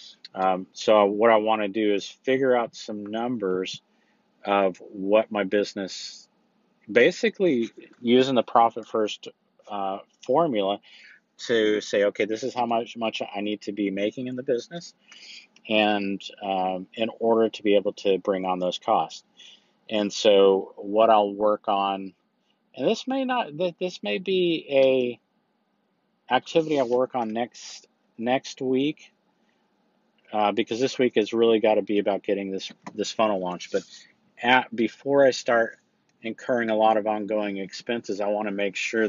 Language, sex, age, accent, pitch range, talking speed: English, male, 50-69, American, 100-120 Hz, 160 wpm